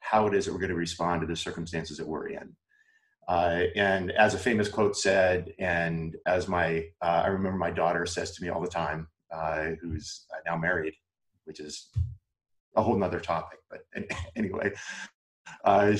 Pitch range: 85-105 Hz